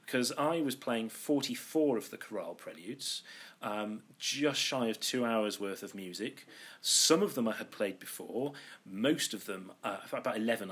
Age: 40-59